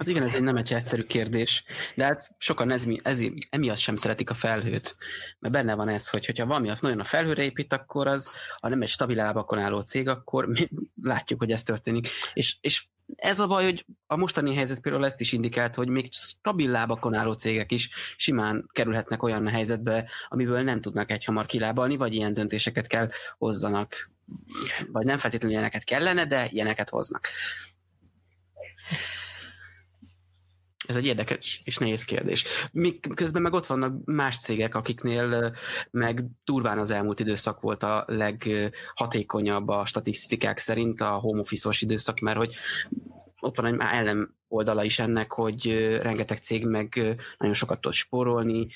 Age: 20-39